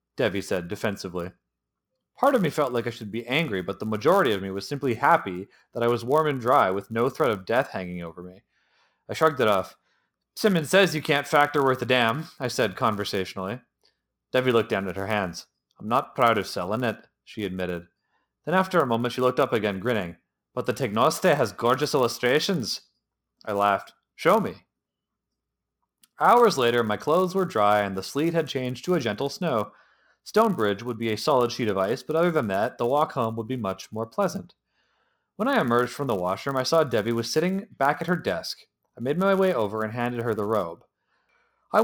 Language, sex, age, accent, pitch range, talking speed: English, male, 30-49, American, 105-150 Hz, 205 wpm